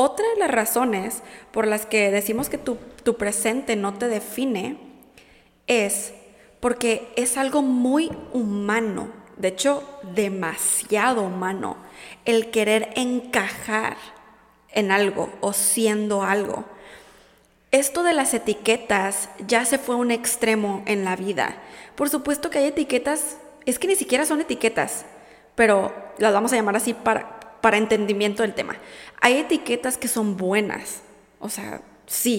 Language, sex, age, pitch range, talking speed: Spanish, female, 20-39, 210-260 Hz, 140 wpm